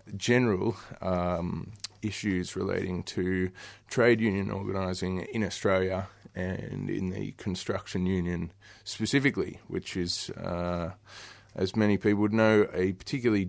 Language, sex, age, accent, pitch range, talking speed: English, male, 20-39, Australian, 95-110 Hz, 115 wpm